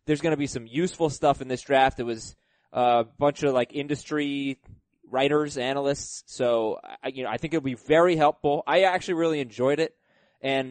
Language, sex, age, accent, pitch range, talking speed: English, male, 20-39, American, 130-165 Hz, 190 wpm